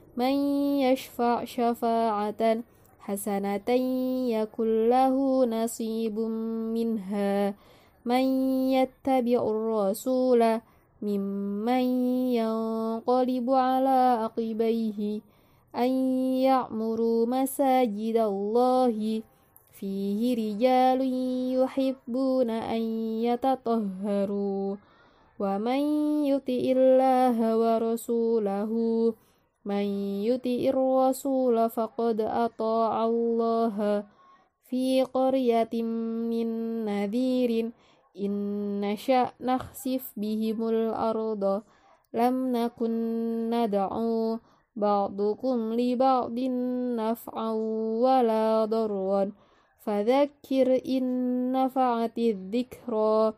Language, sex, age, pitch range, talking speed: Indonesian, female, 20-39, 220-255 Hz, 50 wpm